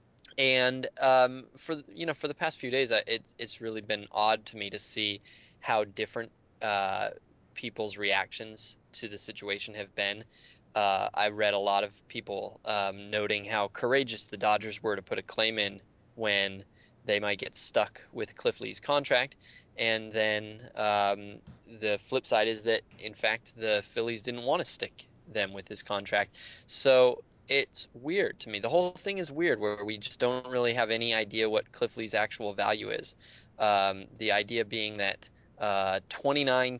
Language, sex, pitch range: English, male, 105-130 Hz